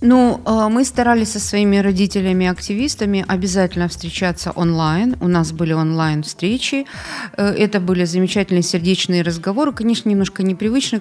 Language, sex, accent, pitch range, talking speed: Ukrainian, female, native, 170-210 Hz, 120 wpm